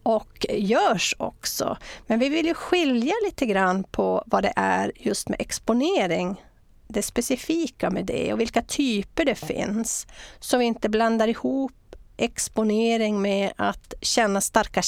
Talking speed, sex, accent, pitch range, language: 145 wpm, female, native, 205-250 Hz, Swedish